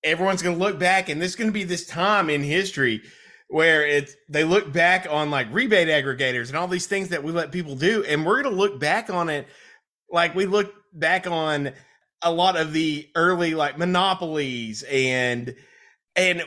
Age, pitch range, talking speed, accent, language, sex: 30-49, 145-190 Hz, 200 wpm, American, English, male